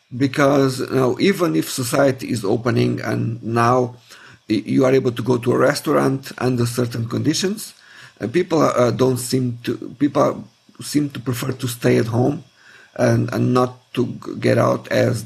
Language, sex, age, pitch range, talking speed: English, male, 50-69, 120-135 Hz, 165 wpm